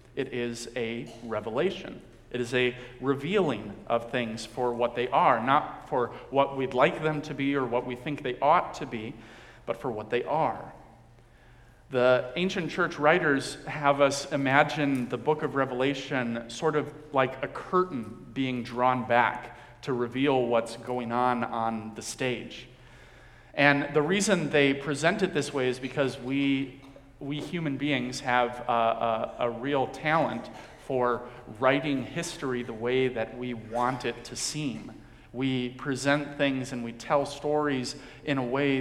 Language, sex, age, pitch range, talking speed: English, male, 40-59, 120-140 Hz, 160 wpm